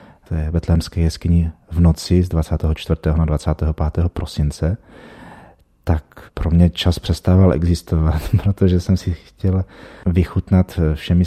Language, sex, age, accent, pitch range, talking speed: Czech, male, 30-49, native, 80-90 Hz, 115 wpm